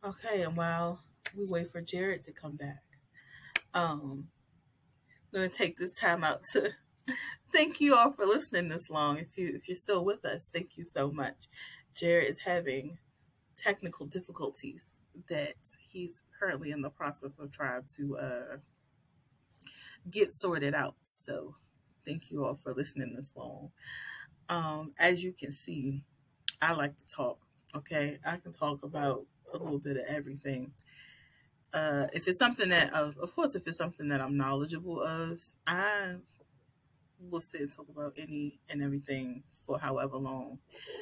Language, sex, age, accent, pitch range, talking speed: English, female, 30-49, American, 140-170 Hz, 160 wpm